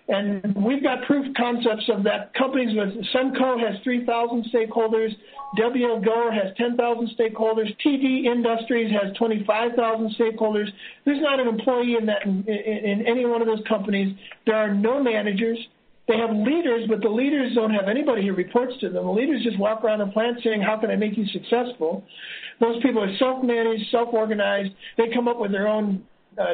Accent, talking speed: American, 190 wpm